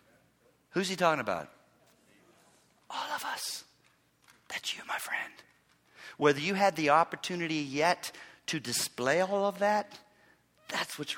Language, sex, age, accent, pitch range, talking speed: English, male, 40-59, American, 180-245 Hz, 130 wpm